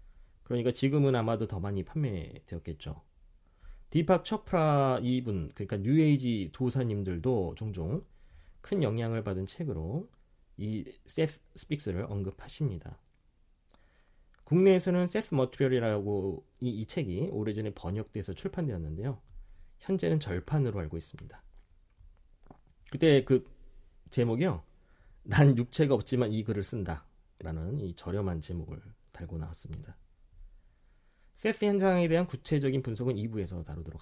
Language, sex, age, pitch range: Korean, male, 30-49, 85-145 Hz